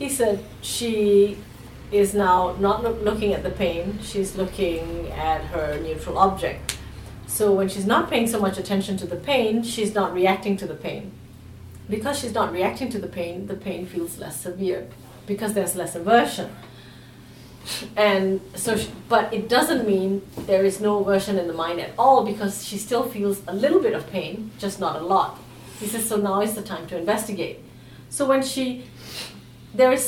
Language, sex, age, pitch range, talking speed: English, female, 30-49, 180-225 Hz, 185 wpm